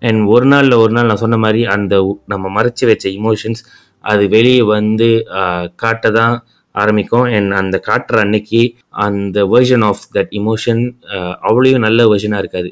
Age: 20-39